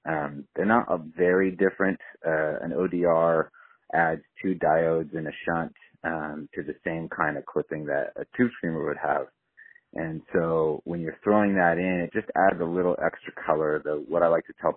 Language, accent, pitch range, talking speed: English, American, 80-90 Hz, 195 wpm